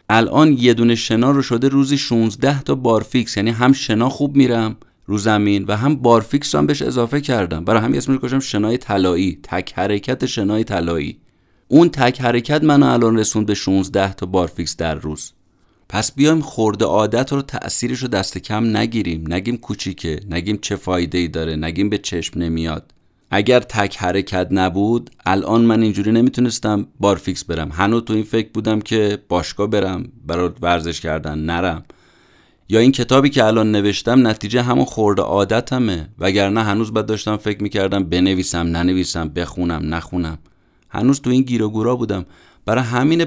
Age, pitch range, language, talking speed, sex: 30-49, 90-120 Hz, Persian, 160 wpm, male